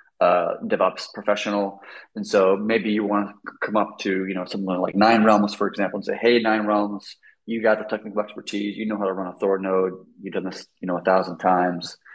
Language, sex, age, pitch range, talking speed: English, male, 30-49, 95-120 Hz, 225 wpm